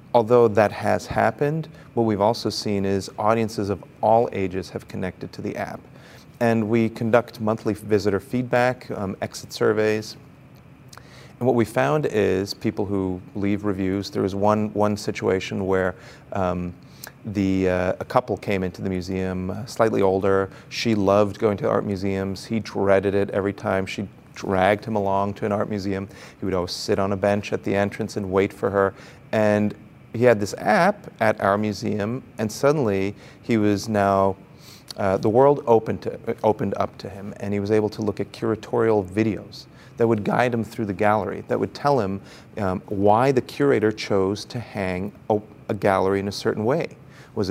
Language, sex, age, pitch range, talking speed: English, male, 40-59, 100-115 Hz, 180 wpm